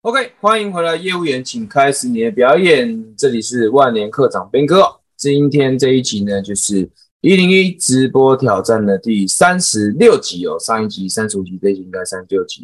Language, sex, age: Chinese, male, 20-39